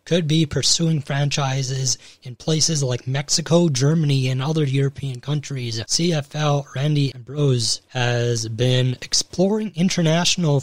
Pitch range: 120-150 Hz